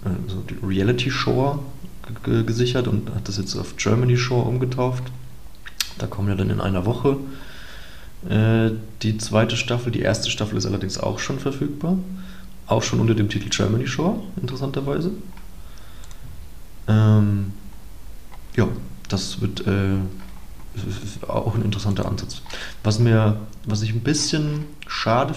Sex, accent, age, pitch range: male, German, 30-49, 95-120 Hz